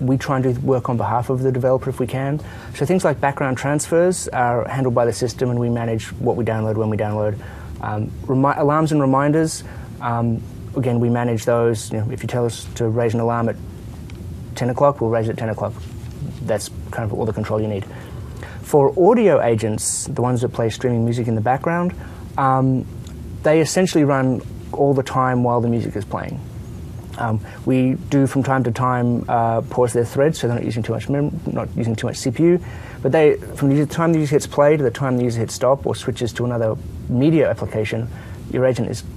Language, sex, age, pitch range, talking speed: English, male, 20-39, 110-135 Hz, 210 wpm